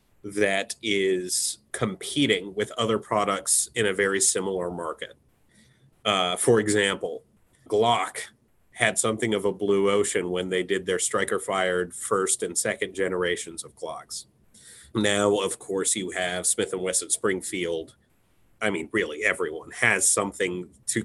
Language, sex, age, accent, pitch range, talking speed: English, male, 30-49, American, 95-115 Hz, 135 wpm